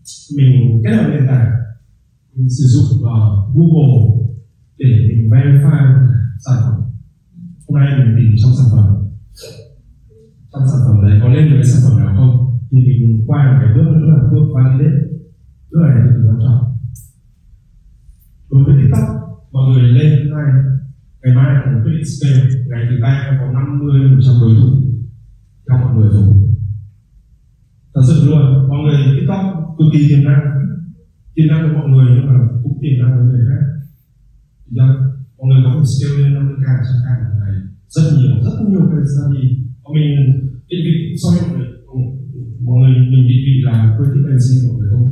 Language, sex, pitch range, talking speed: Vietnamese, male, 125-145 Hz, 170 wpm